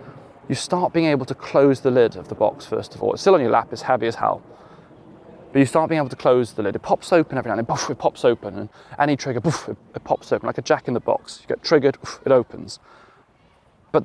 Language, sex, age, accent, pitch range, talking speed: English, male, 20-39, British, 120-145 Hz, 255 wpm